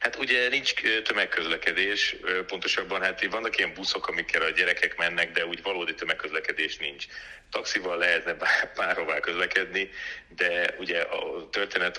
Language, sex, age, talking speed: Hungarian, male, 30-49, 140 wpm